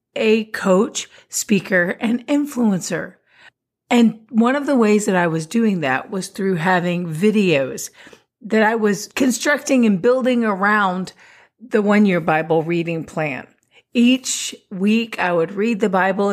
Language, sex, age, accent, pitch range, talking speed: English, female, 40-59, American, 180-230 Hz, 140 wpm